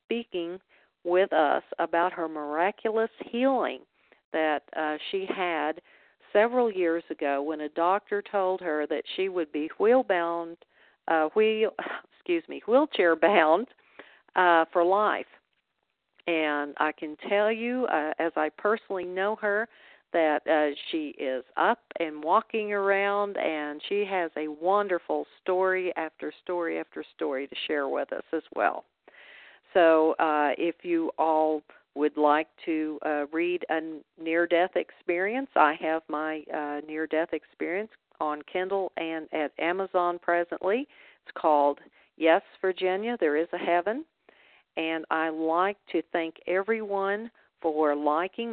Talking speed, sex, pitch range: 130 wpm, female, 155-195 Hz